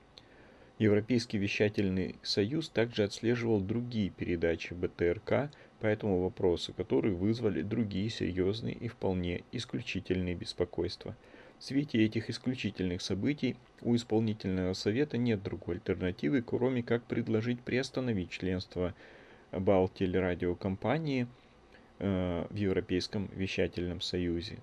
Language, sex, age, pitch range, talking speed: Russian, male, 30-49, 95-120 Hz, 95 wpm